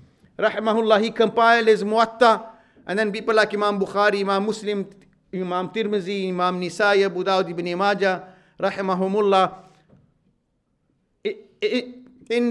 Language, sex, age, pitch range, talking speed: English, male, 50-69, 180-245 Hz, 105 wpm